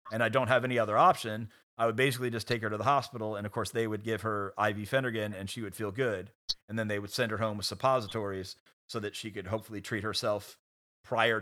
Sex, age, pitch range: male, 30-49, 100-115 Hz